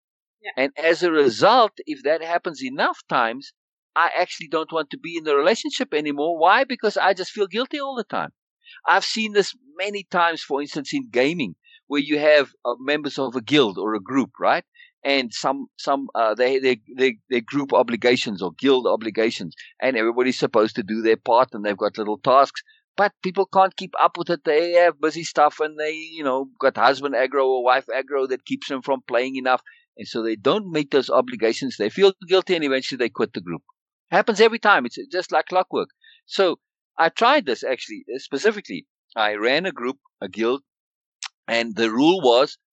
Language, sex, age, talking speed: English, male, 50-69, 195 wpm